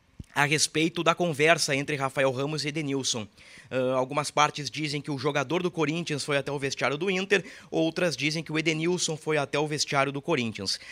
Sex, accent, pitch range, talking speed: male, Brazilian, 145-175 Hz, 185 wpm